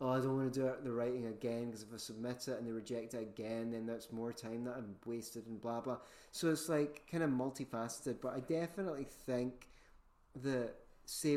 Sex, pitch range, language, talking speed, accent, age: male, 115-135 Hz, English, 225 wpm, British, 30-49